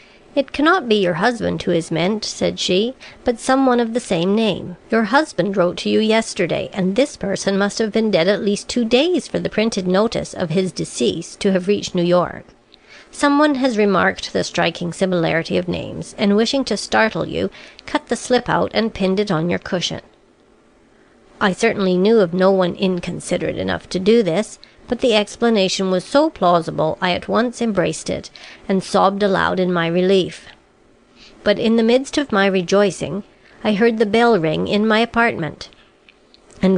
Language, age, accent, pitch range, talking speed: English, 50-69, American, 185-235 Hz, 185 wpm